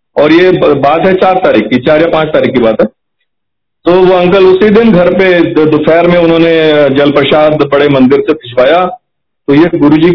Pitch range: 145-170 Hz